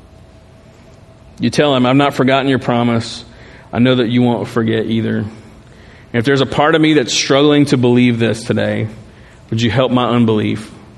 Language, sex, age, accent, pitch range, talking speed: English, male, 40-59, American, 115-140 Hz, 180 wpm